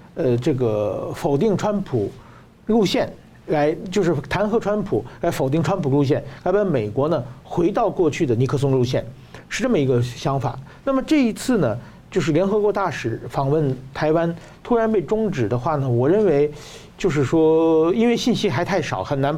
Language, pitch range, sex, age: Chinese, 130-185 Hz, male, 50-69